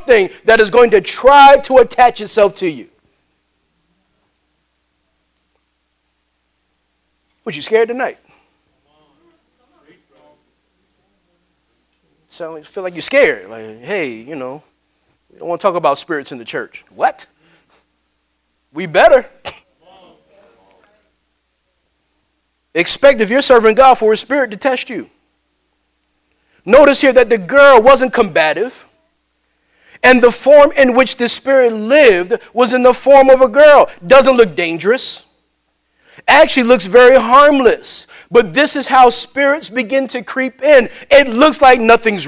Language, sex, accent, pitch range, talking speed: English, male, American, 200-270 Hz, 130 wpm